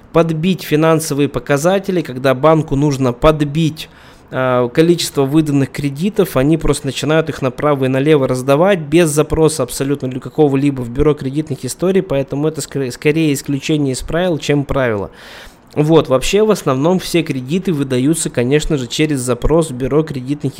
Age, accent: 20-39, native